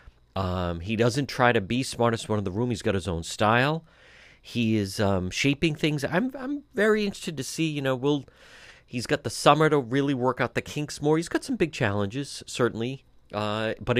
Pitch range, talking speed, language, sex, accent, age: 95-130 Hz, 210 wpm, English, male, American, 40-59